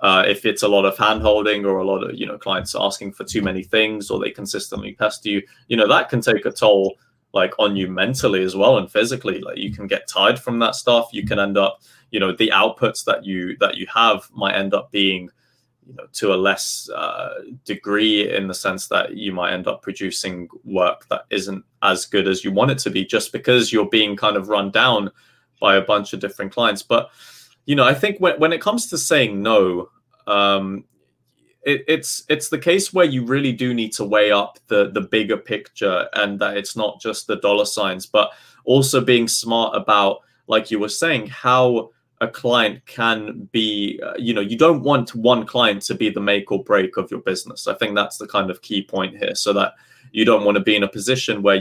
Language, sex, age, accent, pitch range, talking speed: English, male, 20-39, British, 100-125 Hz, 225 wpm